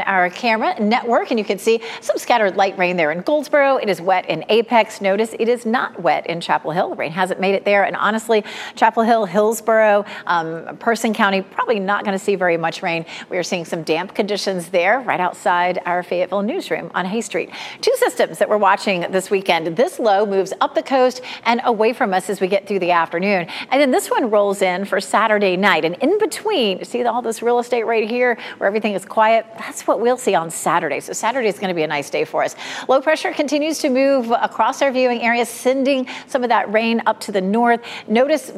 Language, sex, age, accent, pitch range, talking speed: English, female, 40-59, American, 190-240 Hz, 230 wpm